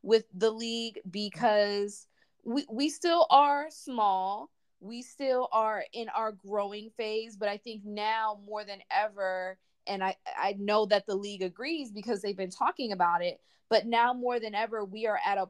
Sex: female